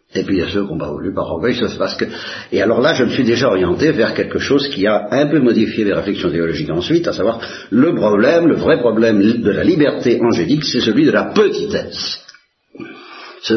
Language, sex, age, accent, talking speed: Italian, male, 60-79, French, 215 wpm